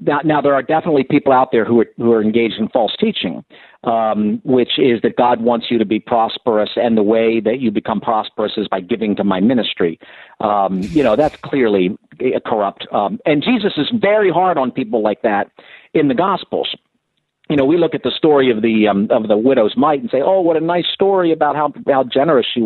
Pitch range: 115-155 Hz